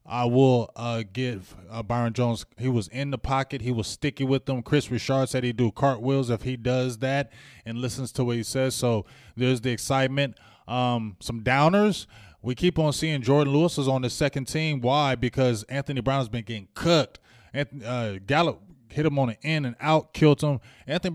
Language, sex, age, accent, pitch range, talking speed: English, male, 20-39, American, 115-140 Hz, 205 wpm